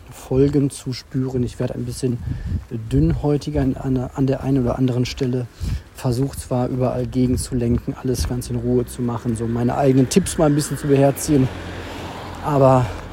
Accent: German